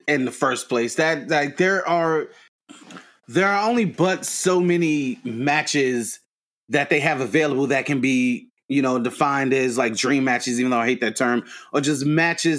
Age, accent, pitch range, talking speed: 30-49, American, 140-175 Hz, 180 wpm